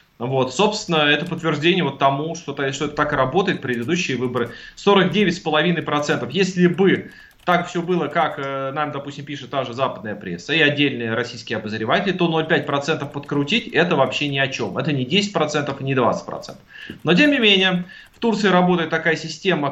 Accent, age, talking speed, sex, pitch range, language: native, 20-39, 165 wpm, male, 140-180 Hz, Russian